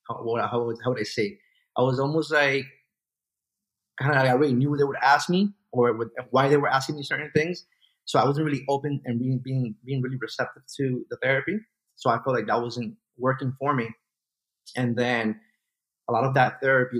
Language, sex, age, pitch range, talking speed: English, male, 30-49, 115-135 Hz, 210 wpm